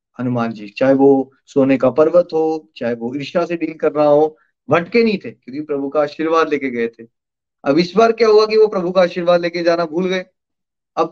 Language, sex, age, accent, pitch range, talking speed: Hindi, male, 30-49, native, 140-180 Hz, 220 wpm